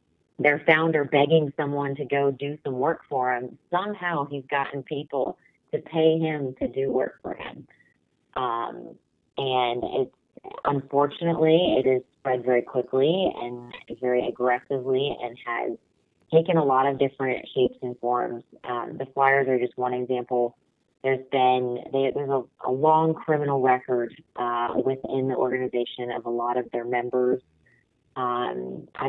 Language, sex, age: English, female, 30-49